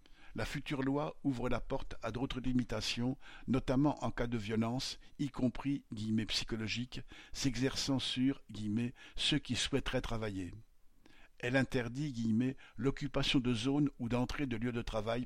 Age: 50-69